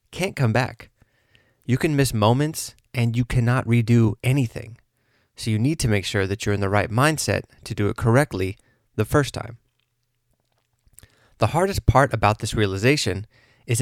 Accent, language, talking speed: American, English, 165 wpm